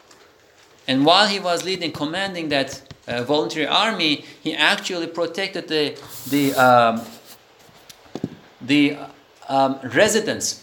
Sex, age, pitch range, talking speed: male, 50-69, 135-185 Hz, 115 wpm